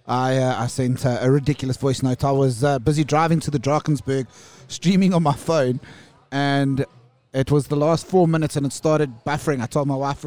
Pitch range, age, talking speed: 130-155 Hz, 30-49, 210 wpm